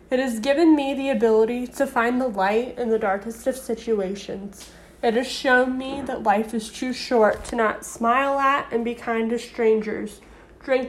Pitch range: 215-255 Hz